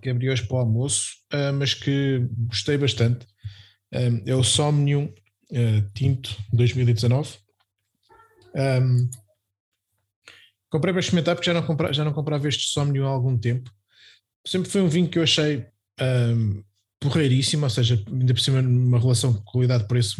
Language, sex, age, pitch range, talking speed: Portuguese, male, 20-39, 120-150 Hz, 130 wpm